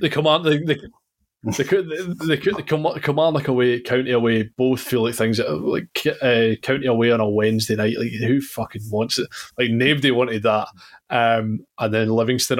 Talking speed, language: 185 wpm, English